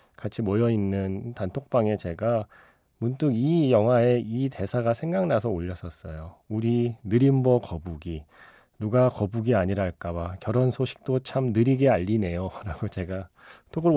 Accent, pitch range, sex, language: native, 95-135 Hz, male, Korean